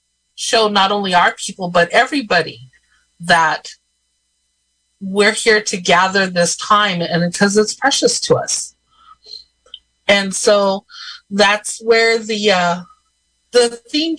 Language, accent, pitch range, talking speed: English, American, 165-215 Hz, 120 wpm